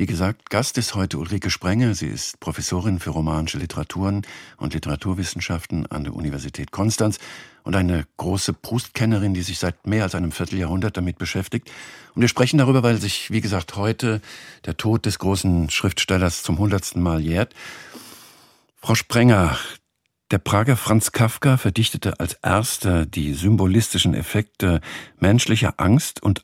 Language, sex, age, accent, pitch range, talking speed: German, male, 50-69, German, 90-120 Hz, 150 wpm